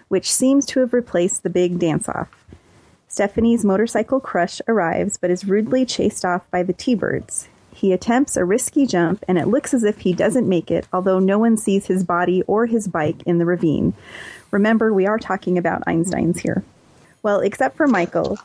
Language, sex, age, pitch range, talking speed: English, female, 30-49, 175-215 Hz, 185 wpm